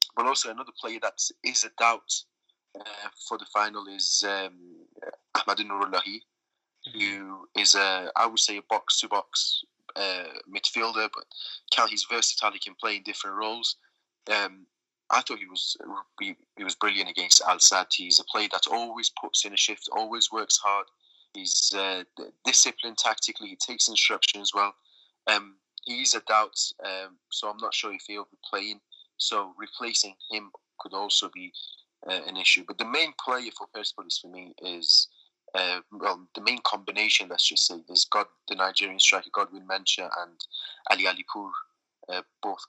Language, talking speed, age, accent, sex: English, 170 wpm, 20-39, British, male